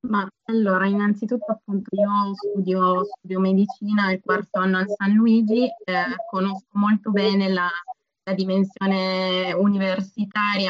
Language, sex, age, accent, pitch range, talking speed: Italian, female, 20-39, native, 185-205 Hz, 125 wpm